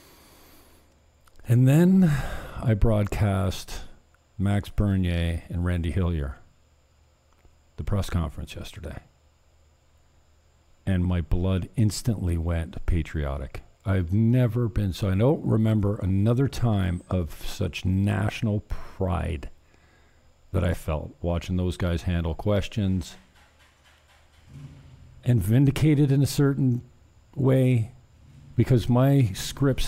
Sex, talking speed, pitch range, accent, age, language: male, 100 wpm, 80-120 Hz, American, 50-69, English